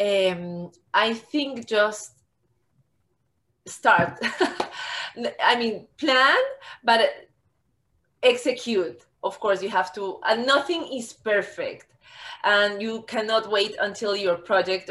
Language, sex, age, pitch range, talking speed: English, female, 20-39, 190-235 Hz, 105 wpm